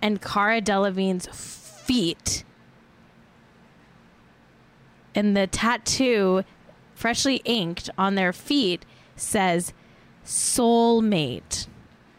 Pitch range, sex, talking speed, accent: 165-220 Hz, female, 70 wpm, American